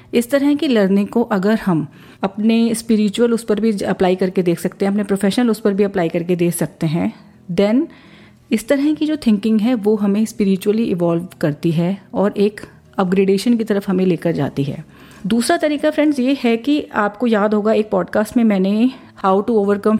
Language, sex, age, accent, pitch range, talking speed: Hindi, female, 40-59, native, 185-230 Hz, 195 wpm